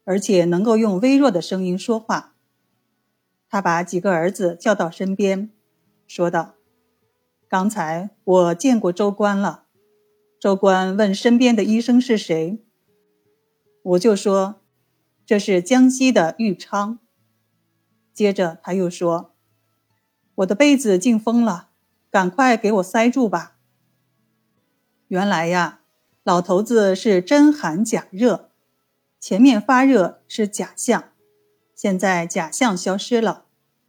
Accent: native